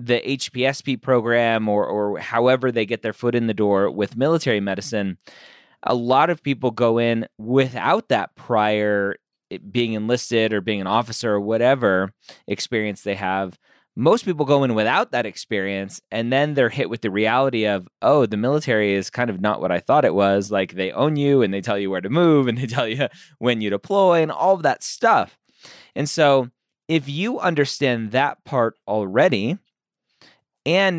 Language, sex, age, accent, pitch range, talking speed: English, male, 20-39, American, 100-130 Hz, 185 wpm